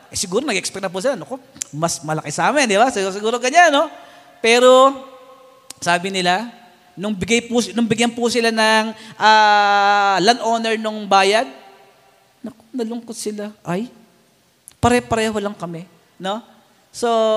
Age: 40-59